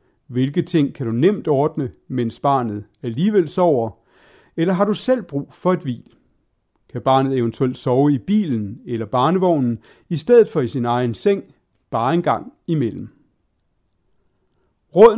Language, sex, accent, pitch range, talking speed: Danish, male, native, 120-185 Hz, 150 wpm